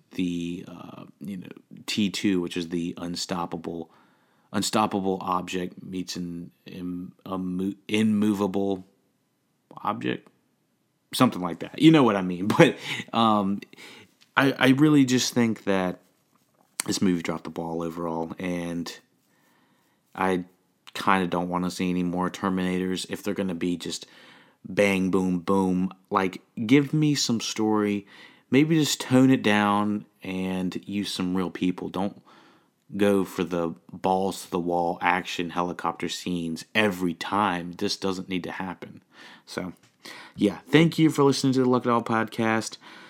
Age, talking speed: 30-49, 145 wpm